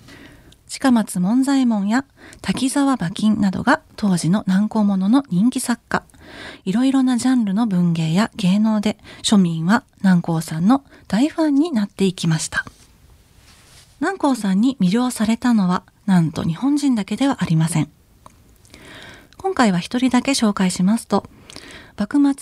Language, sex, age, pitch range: Japanese, female, 40-59, 185-255 Hz